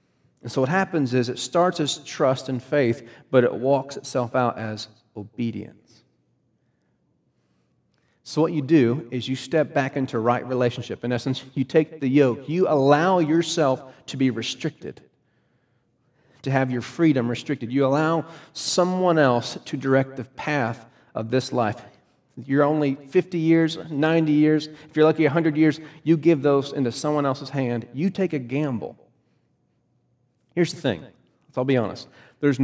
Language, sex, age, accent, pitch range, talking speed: English, male, 40-59, American, 125-155 Hz, 160 wpm